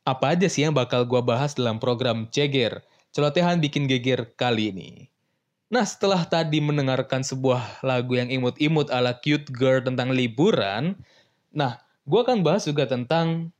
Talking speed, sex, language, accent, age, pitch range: 150 wpm, male, Indonesian, native, 20-39, 120-150 Hz